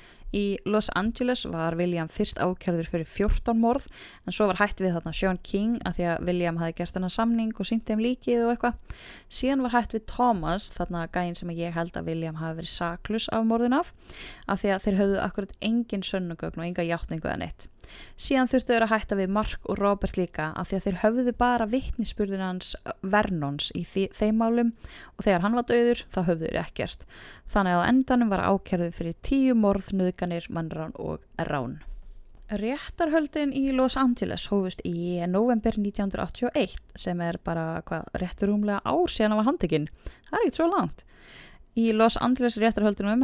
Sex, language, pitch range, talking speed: female, English, 175-230 Hz, 185 wpm